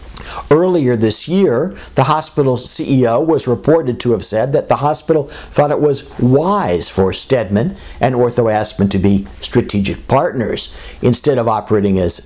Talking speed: 150 wpm